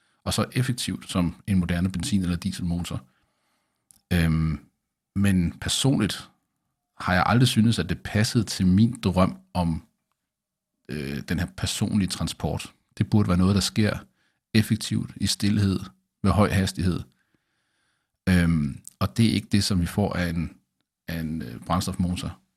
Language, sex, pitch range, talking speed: Danish, male, 85-105 Hz, 140 wpm